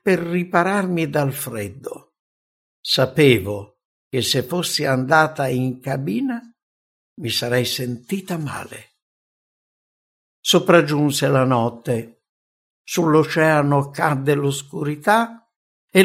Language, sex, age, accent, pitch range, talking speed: English, male, 60-79, Italian, 115-180 Hz, 80 wpm